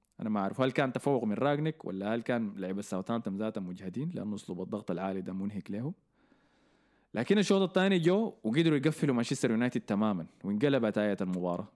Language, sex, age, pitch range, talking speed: Arabic, male, 20-39, 105-165 Hz, 170 wpm